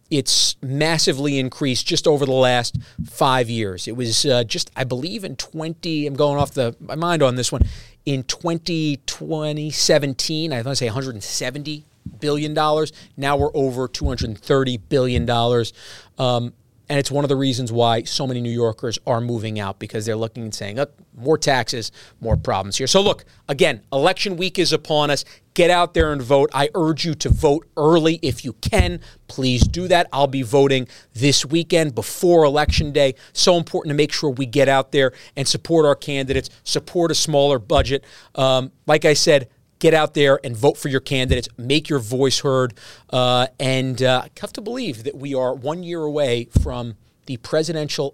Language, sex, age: English, male, 40-59